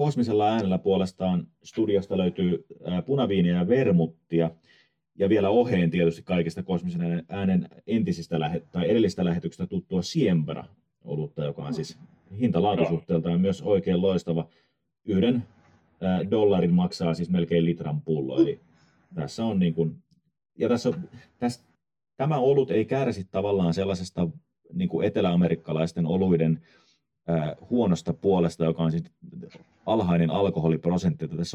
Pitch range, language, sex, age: 80-95 Hz, Finnish, male, 30-49